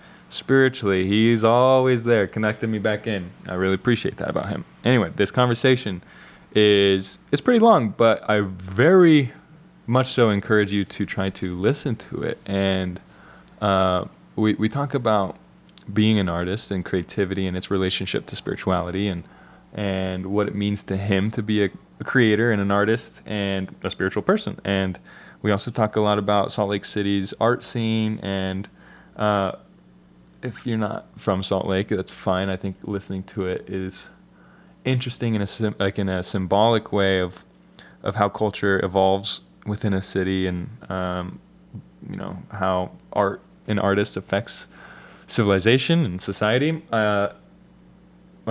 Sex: male